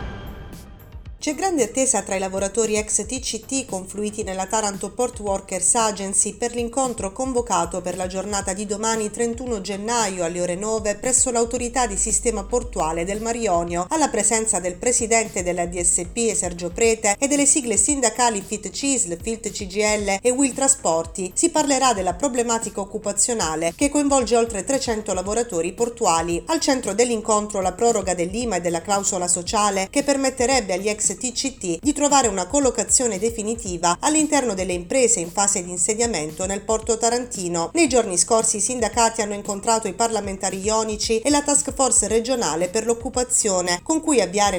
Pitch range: 190-245 Hz